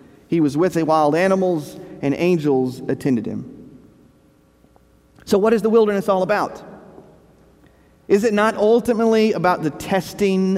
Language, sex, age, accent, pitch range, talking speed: English, male, 40-59, American, 145-200 Hz, 135 wpm